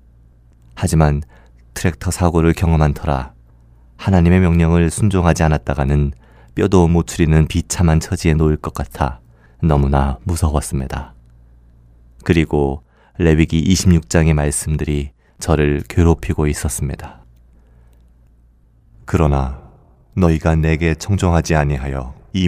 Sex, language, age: male, Korean, 30-49